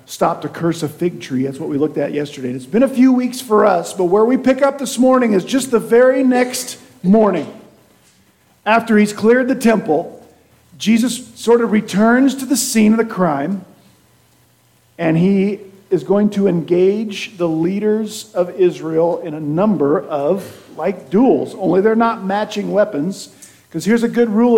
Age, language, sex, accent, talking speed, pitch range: 50-69, English, male, American, 180 wpm, 155-215 Hz